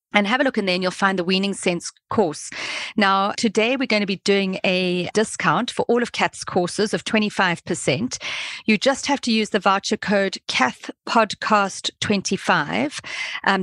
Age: 40-59